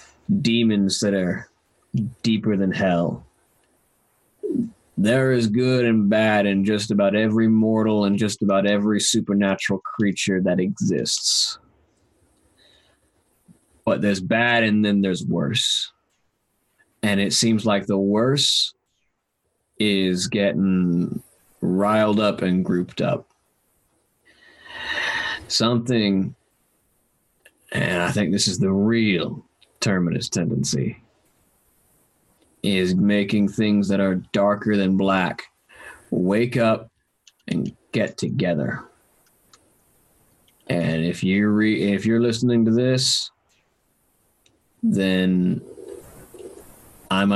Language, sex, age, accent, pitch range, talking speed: English, male, 20-39, American, 95-110 Hz, 100 wpm